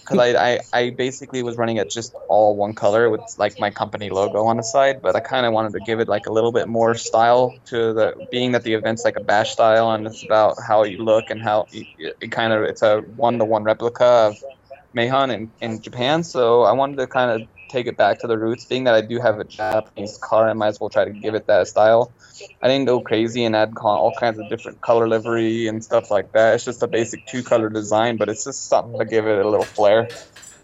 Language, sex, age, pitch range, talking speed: English, male, 20-39, 110-130 Hz, 250 wpm